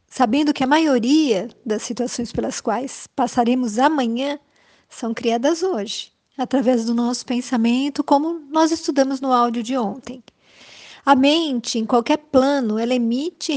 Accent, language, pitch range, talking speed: Brazilian, Portuguese, 245-290 Hz, 135 wpm